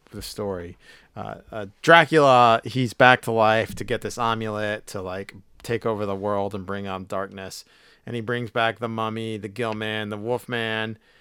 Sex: male